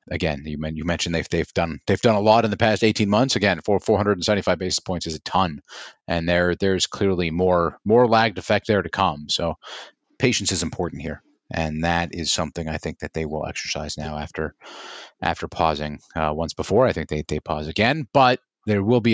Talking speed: 195 wpm